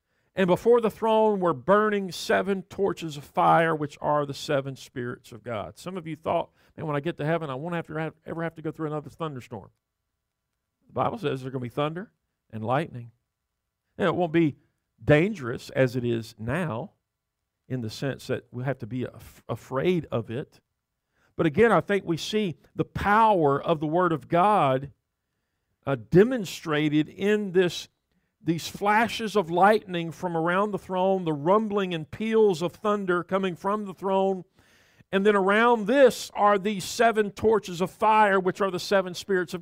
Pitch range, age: 150-195 Hz, 50-69